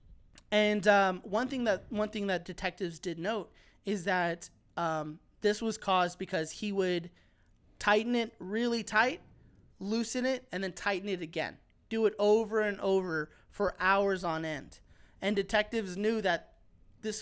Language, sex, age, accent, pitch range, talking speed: English, male, 20-39, American, 175-215 Hz, 155 wpm